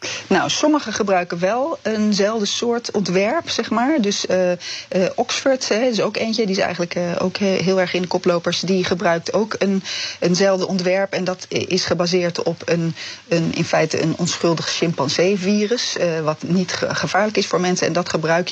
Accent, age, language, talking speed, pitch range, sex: Dutch, 30-49, Dutch, 180 wpm, 170-205 Hz, female